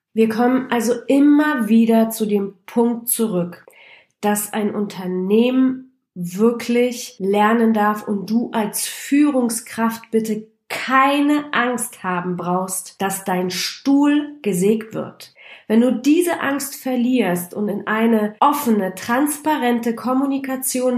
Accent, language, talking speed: German, German, 115 wpm